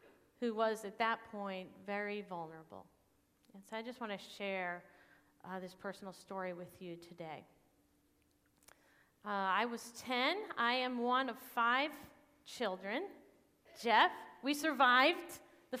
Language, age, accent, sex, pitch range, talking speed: English, 40-59, American, female, 210-275 Hz, 135 wpm